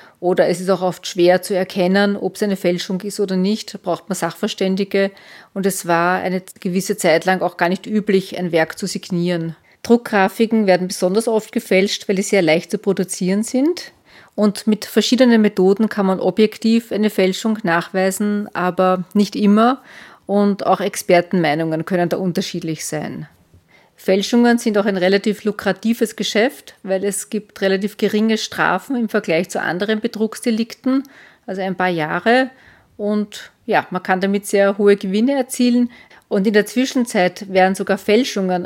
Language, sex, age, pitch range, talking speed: German, female, 40-59, 180-215 Hz, 160 wpm